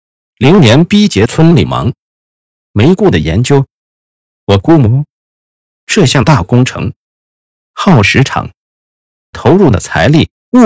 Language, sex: Chinese, male